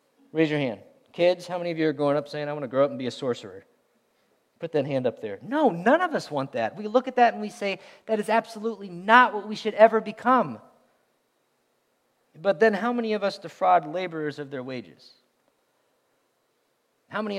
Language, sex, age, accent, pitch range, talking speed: English, male, 40-59, American, 135-195 Hz, 210 wpm